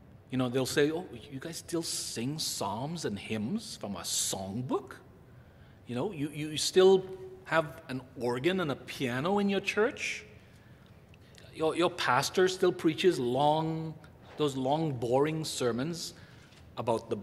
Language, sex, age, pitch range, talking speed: English, male, 40-59, 120-160 Hz, 145 wpm